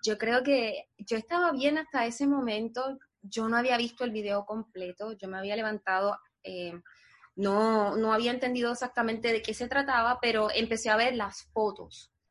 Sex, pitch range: female, 215-255 Hz